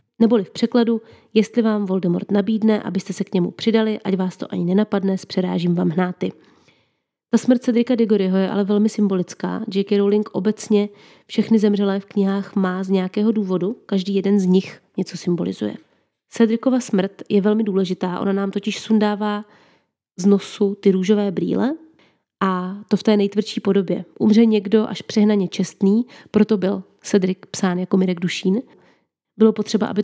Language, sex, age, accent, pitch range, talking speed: Czech, female, 30-49, native, 190-220 Hz, 160 wpm